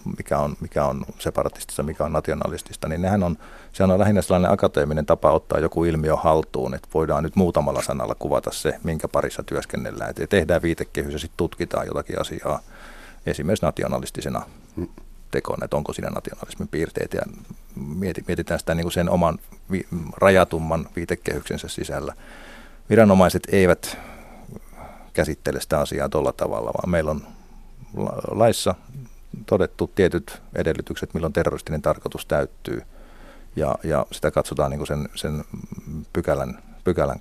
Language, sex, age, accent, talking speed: Finnish, male, 50-69, native, 125 wpm